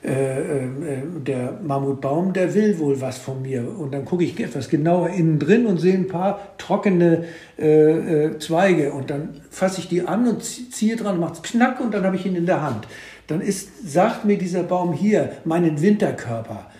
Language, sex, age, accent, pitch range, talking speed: German, male, 60-79, German, 140-180 Hz, 200 wpm